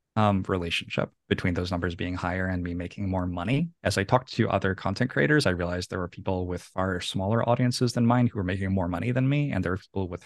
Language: English